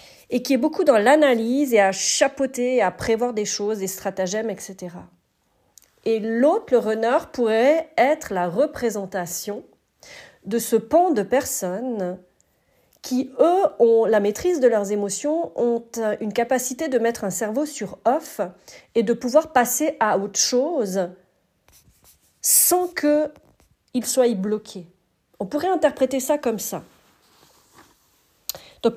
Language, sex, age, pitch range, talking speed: French, female, 40-59, 195-255 Hz, 135 wpm